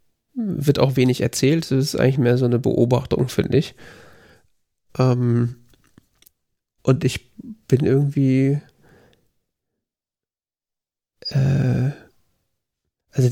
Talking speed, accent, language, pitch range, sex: 90 wpm, German, German, 120-140 Hz, male